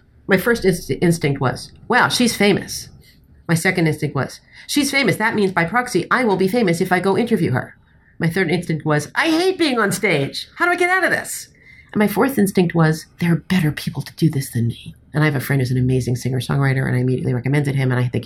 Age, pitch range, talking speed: 40-59, 135-185 Hz, 240 wpm